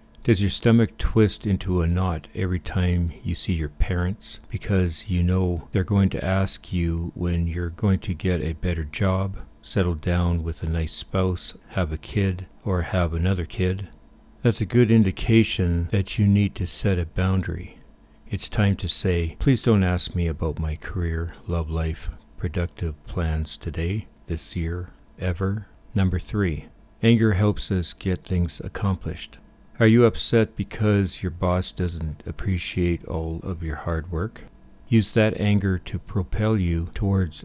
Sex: male